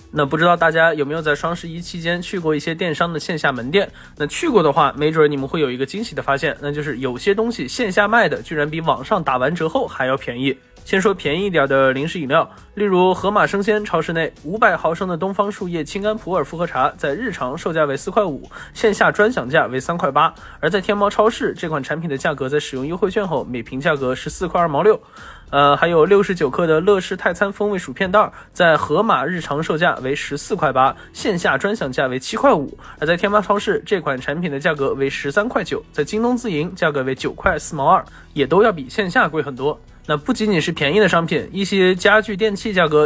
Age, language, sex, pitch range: 20-39, Chinese, male, 150-205 Hz